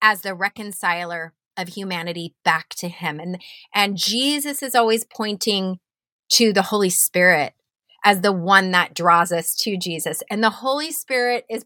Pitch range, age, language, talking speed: 180-235 Hz, 30-49, English, 160 wpm